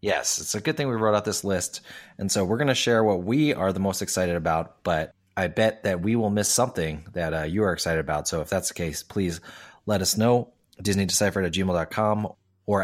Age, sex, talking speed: 30-49, male, 235 wpm